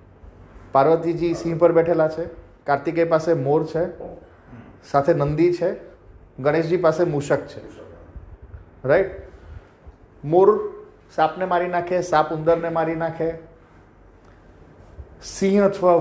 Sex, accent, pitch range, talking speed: male, native, 140-185 Hz, 110 wpm